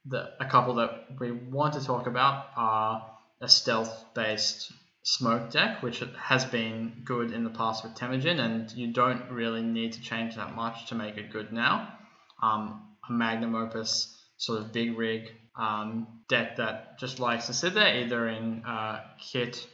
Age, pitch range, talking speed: 10-29, 110-125 Hz, 175 wpm